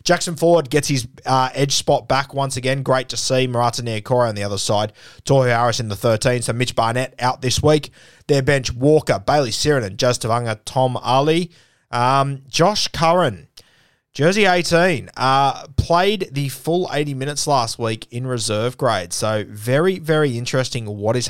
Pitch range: 115-140 Hz